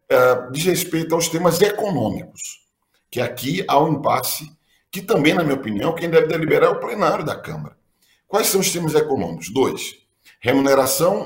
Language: Portuguese